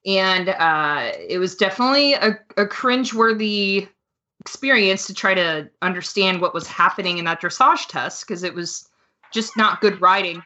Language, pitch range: English, 180-225 Hz